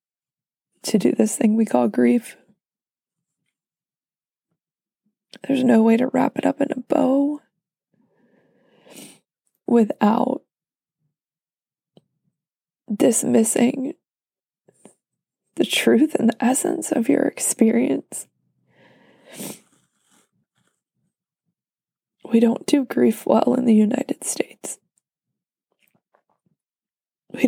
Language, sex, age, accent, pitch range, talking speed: English, female, 20-39, American, 195-245 Hz, 80 wpm